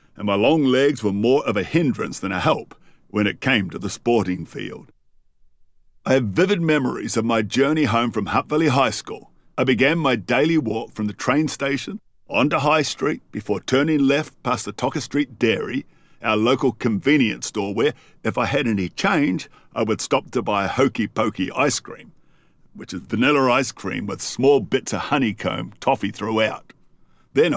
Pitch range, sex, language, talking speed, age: 110-145 Hz, male, English, 180 wpm, 50-69